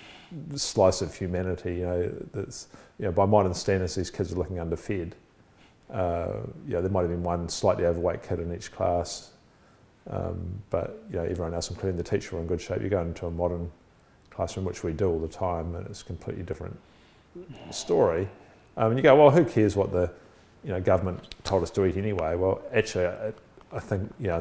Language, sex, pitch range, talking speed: English, male, 85-100 Hz, 205 wpm